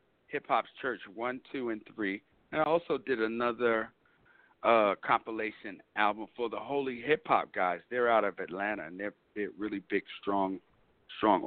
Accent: American